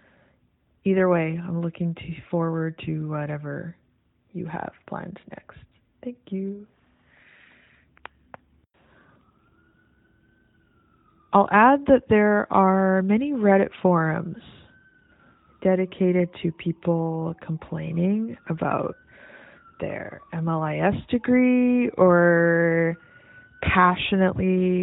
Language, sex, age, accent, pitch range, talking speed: English, female, 20-39, American, 165-195 Hz, 75 wpm